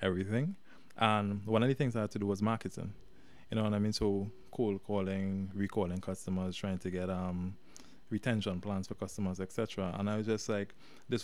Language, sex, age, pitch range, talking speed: English, male, 20-39, 95-110 Hz, 200 wpm